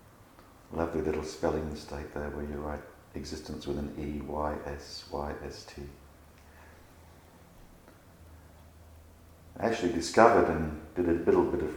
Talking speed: 105 wpm